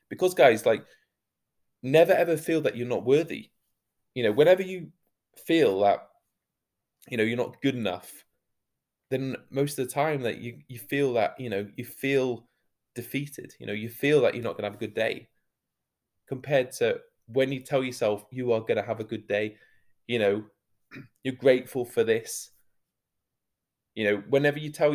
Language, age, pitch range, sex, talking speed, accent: English, 20-39, 110-140 Hz, male, 175 wpm, British